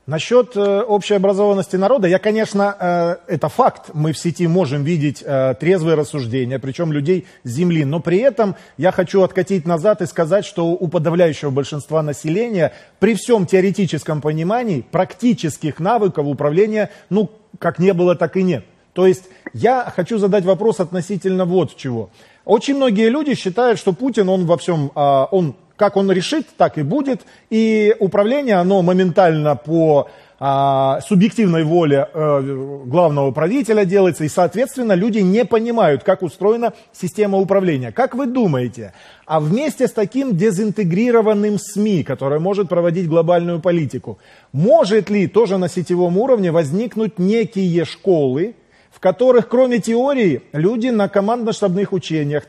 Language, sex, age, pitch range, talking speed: Russian, male, 30-49, 165-210 Hz, 140 wpm